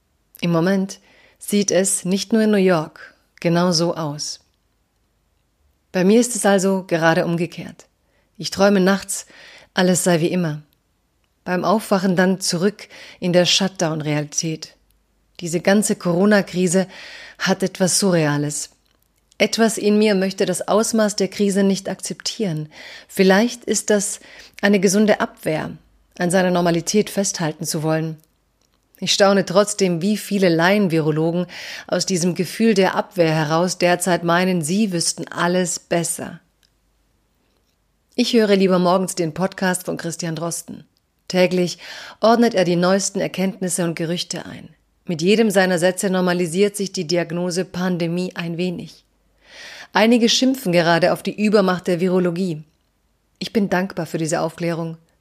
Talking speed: 135 wpm